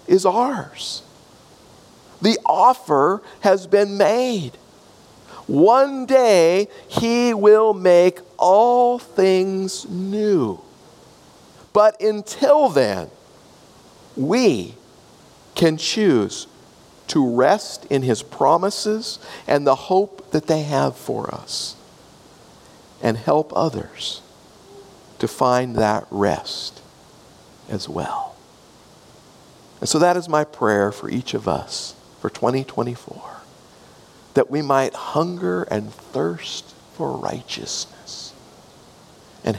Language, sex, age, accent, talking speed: English, male, 50-69, American, 95 wpm